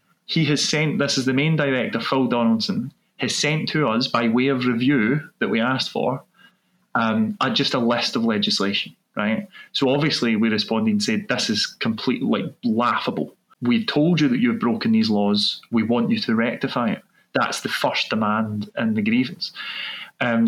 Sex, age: male, 20-39